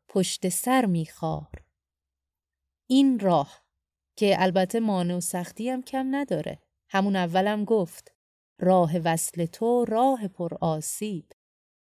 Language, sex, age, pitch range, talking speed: Persian, female, 30-49, 165-205 Hz, 115 wpm